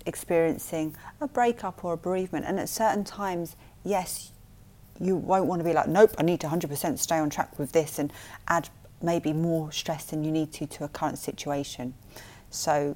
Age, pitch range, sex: 30-49, 150-185 Hz, female